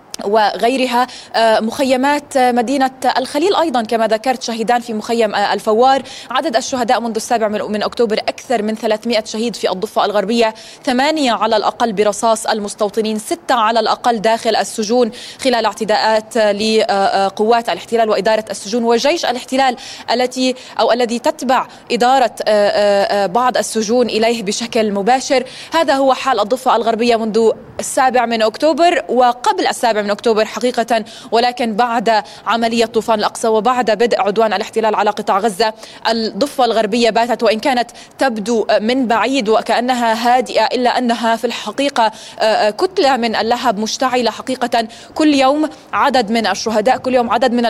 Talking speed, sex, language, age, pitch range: 135 wpm, female, Arabic, 20-39, 220-255 Hz